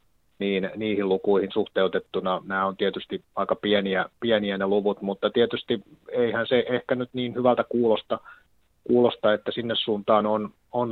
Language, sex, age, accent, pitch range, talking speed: Finnish, male, 30-49, native, 100-115 Hz, 135 wpm